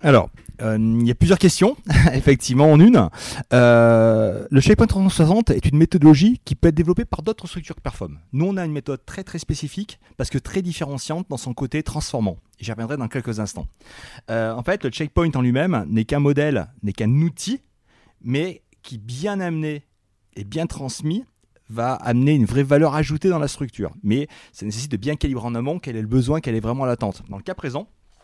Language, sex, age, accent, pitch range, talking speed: French, male, 30-49, French, 115-155 Hz, 205 wpm